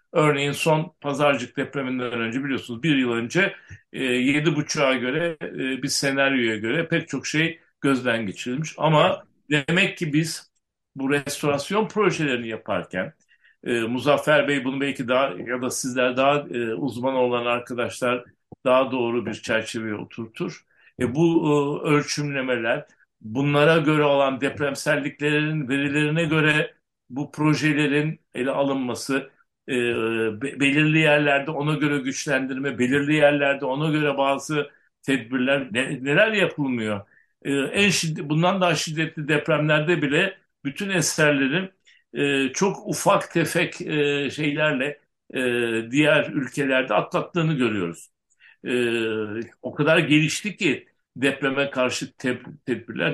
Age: 60-79